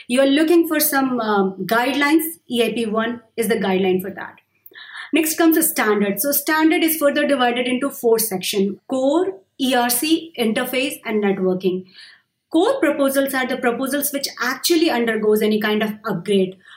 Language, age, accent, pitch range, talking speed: English, 30-49, Indian, 215-280 Hz, 145 wpm